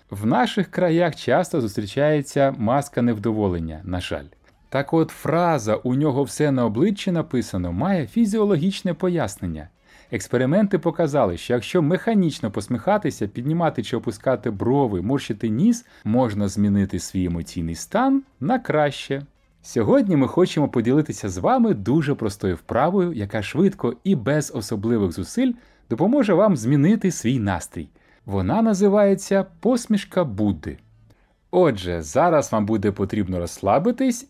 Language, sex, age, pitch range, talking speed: Ukrainian, male, 30-49, 105-180 Hz, 120 wpm